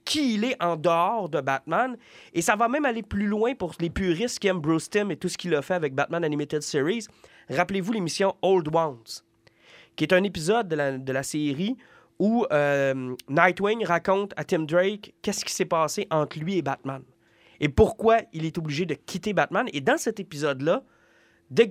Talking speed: 205 wpm